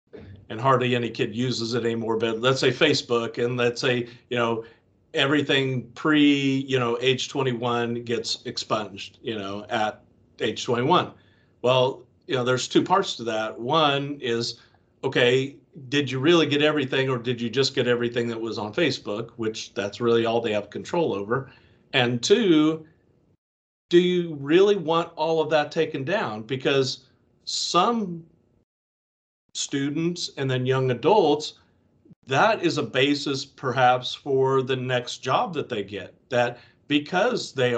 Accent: American